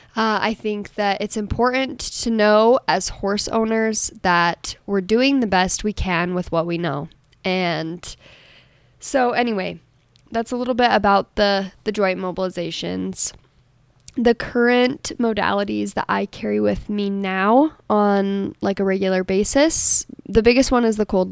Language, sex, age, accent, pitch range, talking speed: English, female, 10-29, American, 180-210 Hz, 150 wpm